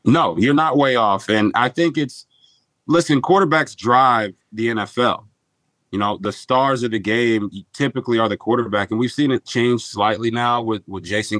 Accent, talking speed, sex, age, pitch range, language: American, 185 wpm, male, 30-49, 100-120 Hz, English